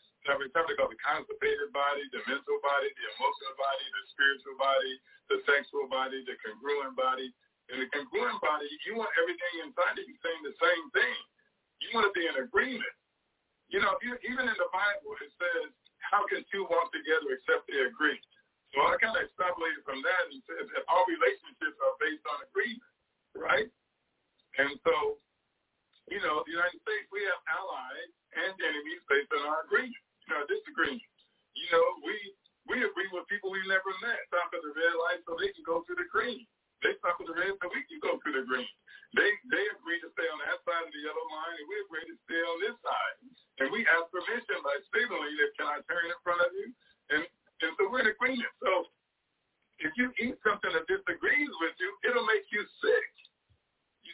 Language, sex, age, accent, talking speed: English, male, 50-69, American, 205 wpm